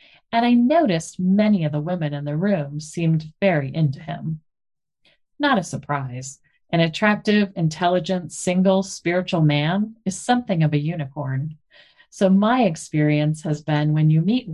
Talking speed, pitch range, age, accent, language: 150 wpm, 150-195 Hz, 40-59, American, English